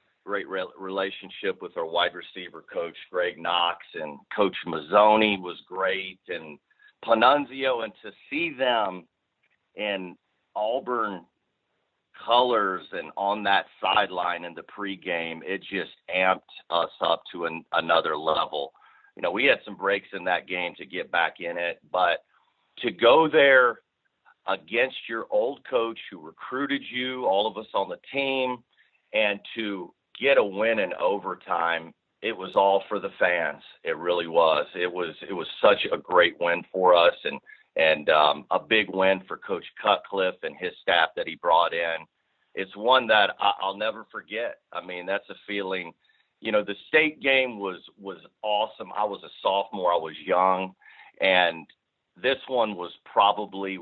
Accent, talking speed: American, 160 wpm